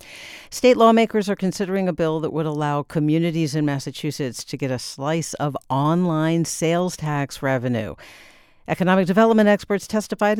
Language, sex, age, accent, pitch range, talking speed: English, female, 50-69, American, 135-180 Hz, 145 wpm